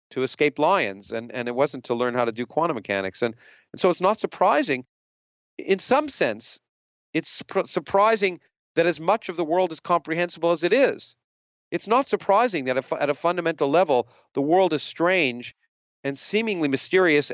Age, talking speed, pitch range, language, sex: 40-59, 180 wpm, 135-185 Hz, English, male